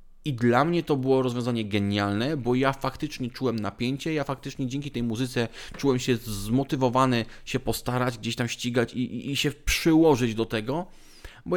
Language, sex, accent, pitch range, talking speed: Polish, male, native, 115-145 Hz, 170 wpm